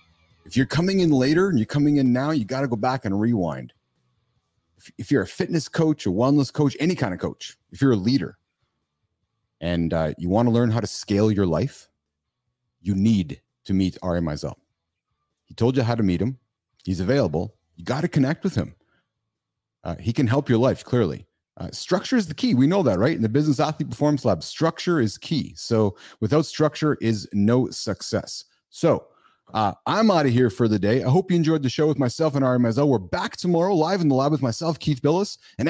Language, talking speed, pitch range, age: English, 215 wpm, 110-160 Hz, 30-49